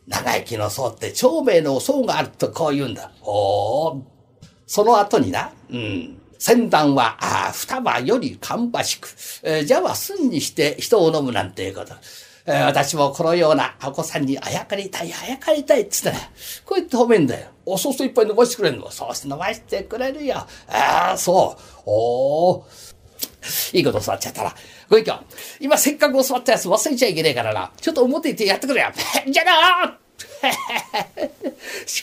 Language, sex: Japanese, male